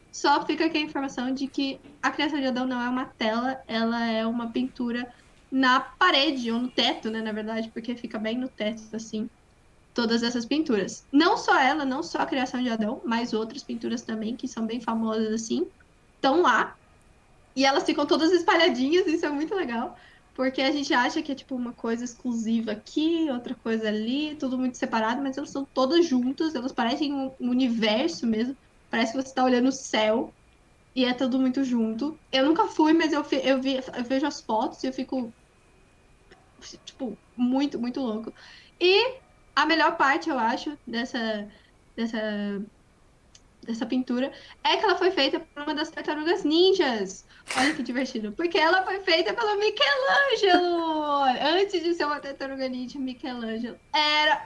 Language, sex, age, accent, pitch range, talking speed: Portuguese, female, 10-29, Brazilian, 235-300 Hz, 175 wpm